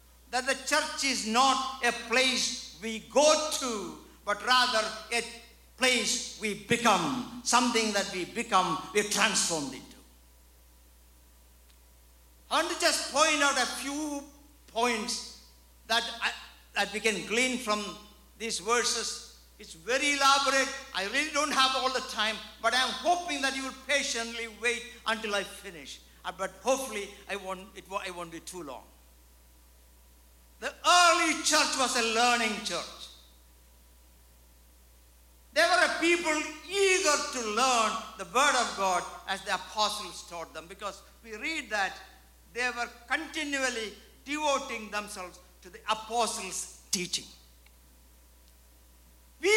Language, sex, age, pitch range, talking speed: English, male, 60-79, 185-280 Hz, 135 wpm